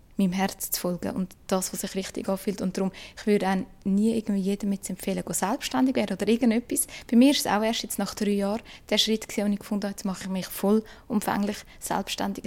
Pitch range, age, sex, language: 195-225 Hz, 20-39, female, German